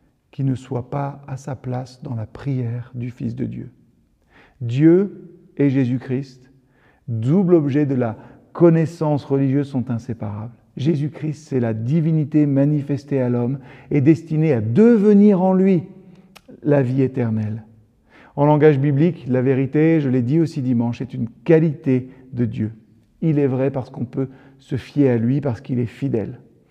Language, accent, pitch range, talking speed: French, French, 120-150 Hz, 155 wpm